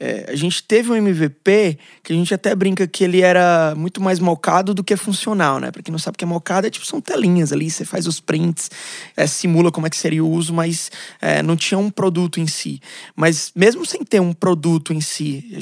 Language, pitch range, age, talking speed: Portuguese, 155-195 Hz, 20-39, 240 wpm